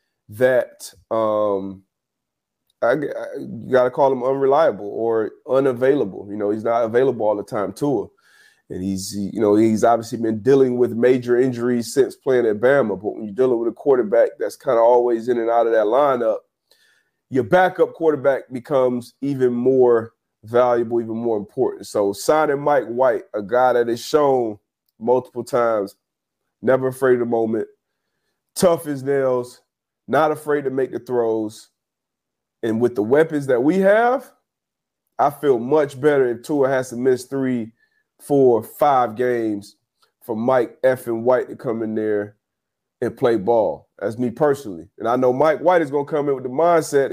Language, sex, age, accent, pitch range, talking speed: English, male, 30-49, American, 115-155 Hz, 170 wpm